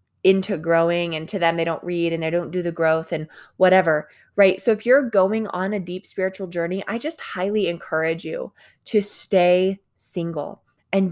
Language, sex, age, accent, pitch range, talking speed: English, female, 20-39, American, 170-205 Hz, 190 wpm